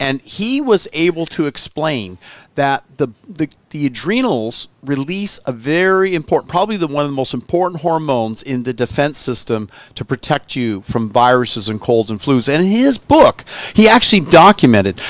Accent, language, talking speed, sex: American, English, 170 wpm, male